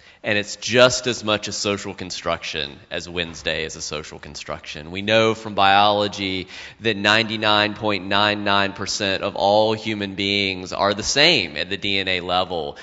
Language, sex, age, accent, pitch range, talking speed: English, male, 30-49, American, 95-115 Hz, 145 wpm